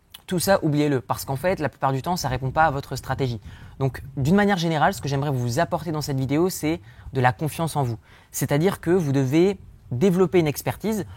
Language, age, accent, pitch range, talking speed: French, 20-39, French, 125-175 Hz, 225 wpm